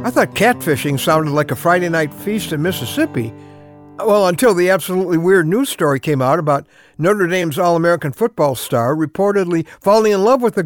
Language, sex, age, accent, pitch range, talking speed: English, male, 60-79, American, 150-230 Hz, 180 wpm